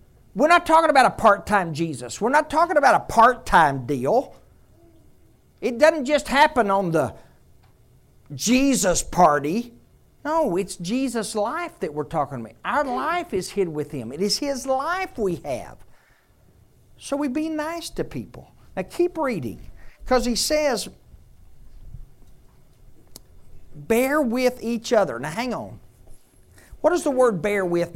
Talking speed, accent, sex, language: 150 wpm, American, male, English